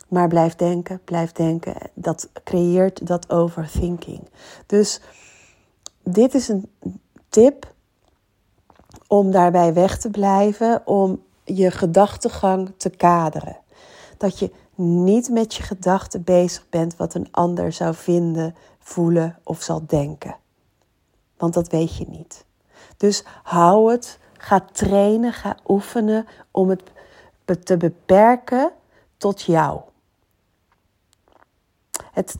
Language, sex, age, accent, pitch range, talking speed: Dutch, female, 40-59, Dutch, 170-220 Hz, 110 wpm